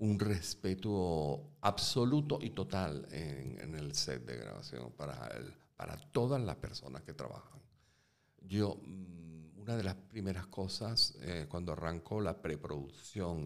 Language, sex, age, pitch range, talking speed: Spanish, male, 50-69, 80-130 Hz, 130 wpm